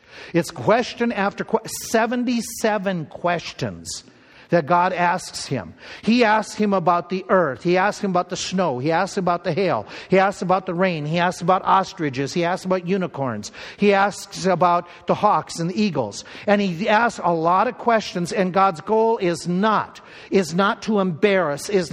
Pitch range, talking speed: 175-215 Hz, 180 wpm